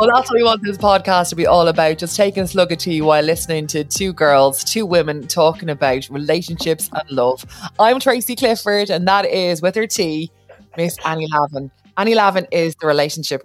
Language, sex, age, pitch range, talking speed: English, female, 20-39, 145-185 Hz, 205 wpm